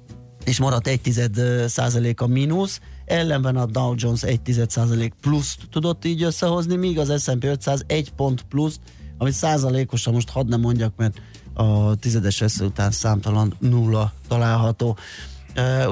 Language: Hungarian